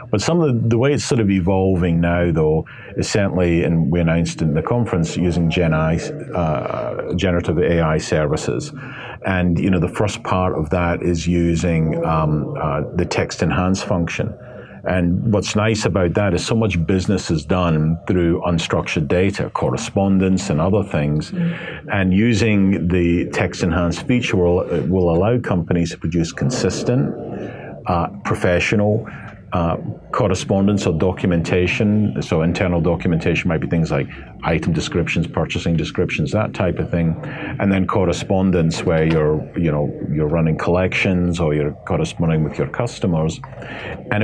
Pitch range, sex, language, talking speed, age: 85-105 Hz, male, English, 150 wpm, 50-69